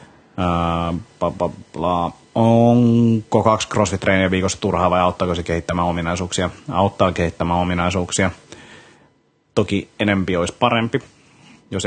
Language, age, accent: Finnish, 30-49, native